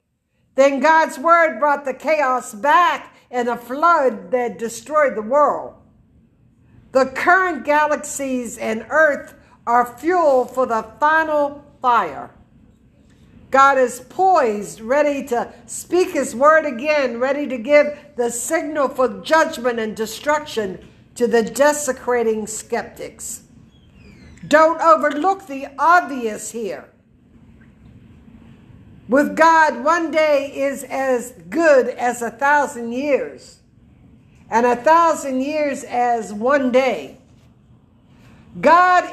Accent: American